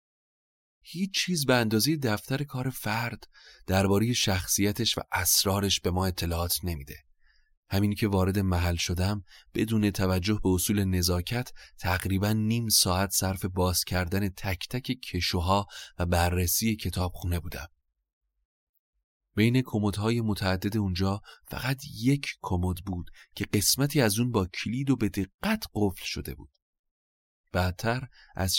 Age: 30-49